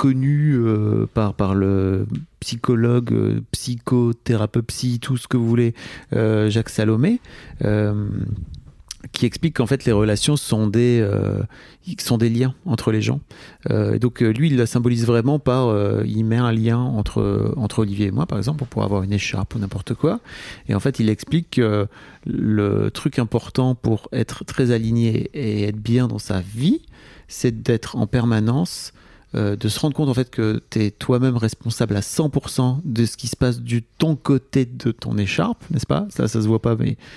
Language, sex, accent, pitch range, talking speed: French, male, French, 110-130 Hz, 190 wpm